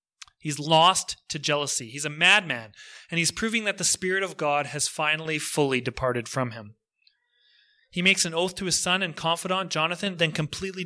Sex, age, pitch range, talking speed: male, 30-49, 130-185 Hz, 180 wpm